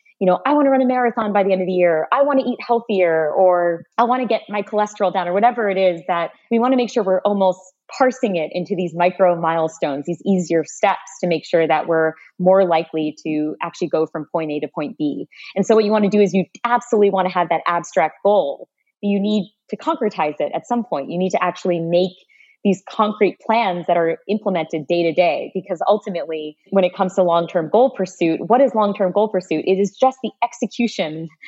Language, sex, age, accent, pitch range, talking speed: English, female, 20-39, American, 170-210 Hz, 225 wpm